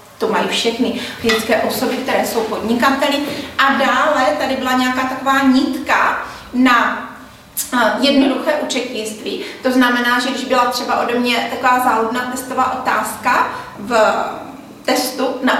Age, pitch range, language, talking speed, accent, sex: 30-49, 225-290 Hz, Czech, 130 wpm, native, female